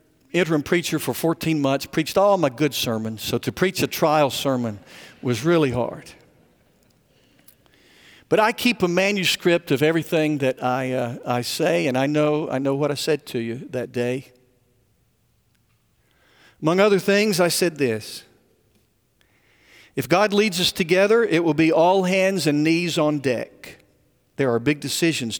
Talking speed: 160 wpm